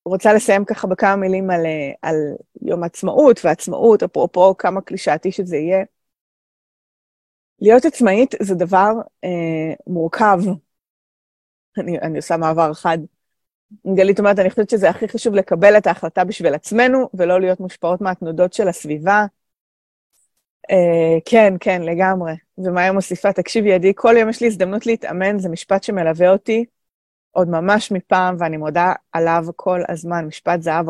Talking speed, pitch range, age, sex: 140 wpm, 180-225 Hz, 30-49, female